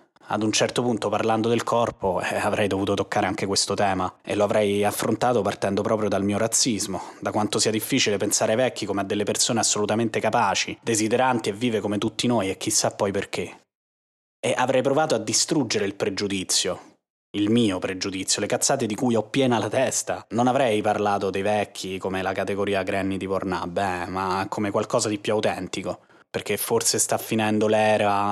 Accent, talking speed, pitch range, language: native, 185 wpm, 95-115 Hz, Italian